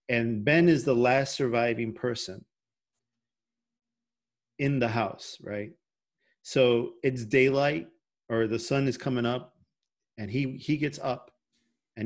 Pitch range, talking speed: 115-135 Hz, 130 wpm